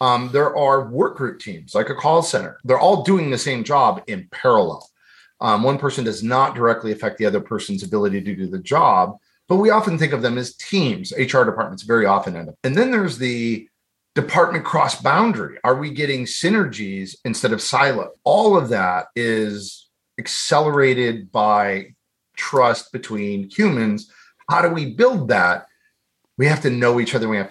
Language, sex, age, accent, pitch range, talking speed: English, male, 40-59, American, 110-150 Hz, 180 wpm